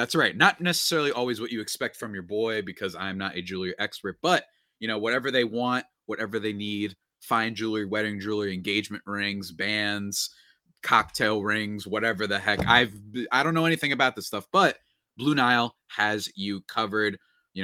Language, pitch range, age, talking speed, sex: English, 95-125 Hz, 30-49, 185 wpm, male